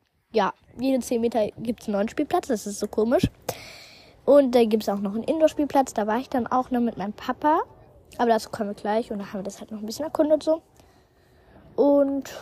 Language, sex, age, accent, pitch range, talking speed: German, female, 20-39, German, 210-275 Hz, 230 wpm